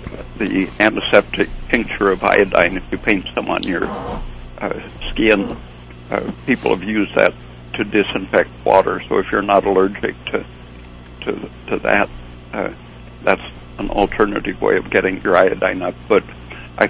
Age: 60-79